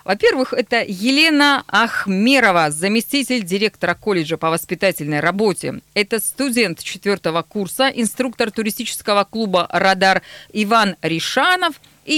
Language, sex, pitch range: Russian, female, 180-255 Hz